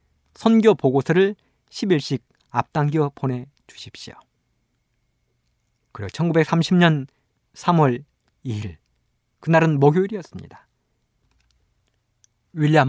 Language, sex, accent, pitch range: Korean, male, native, 120-185 Hz